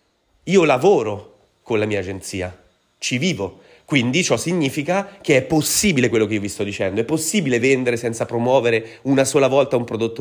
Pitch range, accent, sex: 110-160 Hz, native, male